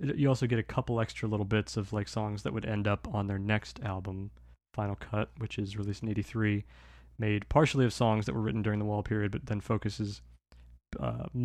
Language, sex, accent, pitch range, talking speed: English, male, American, 100-115 Hz, 215 wpm